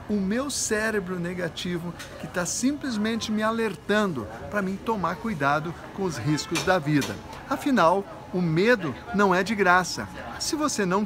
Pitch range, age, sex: 165-230 Hz, 60-79, male